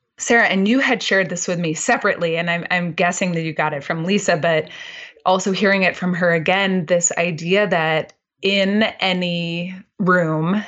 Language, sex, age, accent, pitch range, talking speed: English, female, 20-39, American, 165-205 Hz, 180 wpm